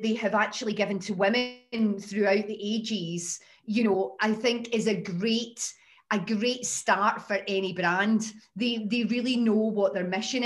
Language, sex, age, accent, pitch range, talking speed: English, female, 30-49, British, 200-240 Hz, 165 wpm